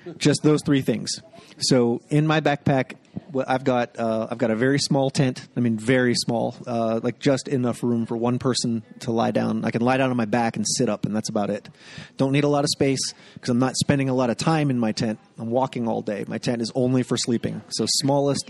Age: 30-49